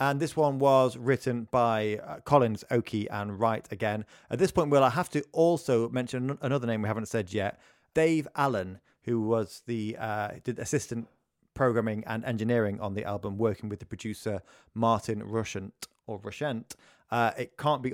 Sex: male